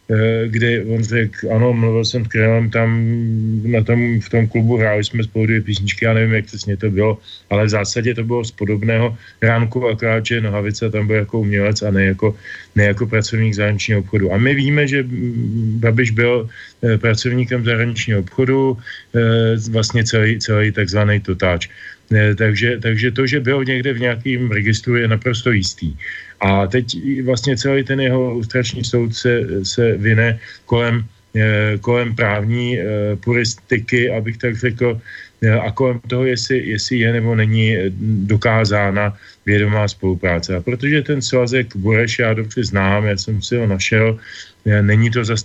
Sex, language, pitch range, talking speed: male, Slovak, 105-120 Hz, 155 wpm